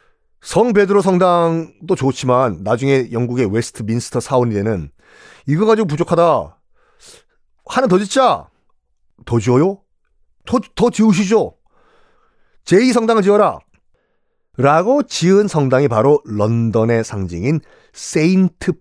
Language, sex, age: Korean, male, 40-59